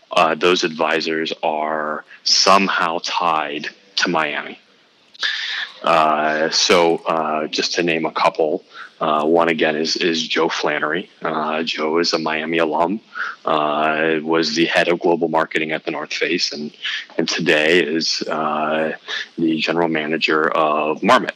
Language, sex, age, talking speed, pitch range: English, male, 20-39, 140 wpm, 80-85 Hz